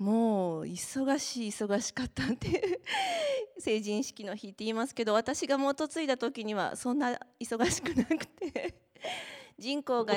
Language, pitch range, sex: Japanese, 190-245 Hz, female